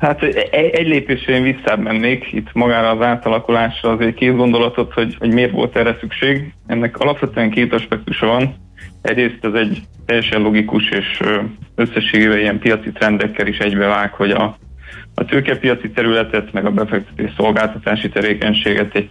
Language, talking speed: Hungarian, 145 wpm